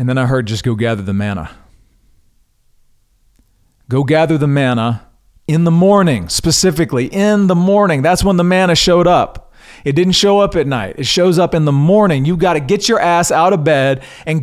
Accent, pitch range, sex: American, 110-155 Hz, male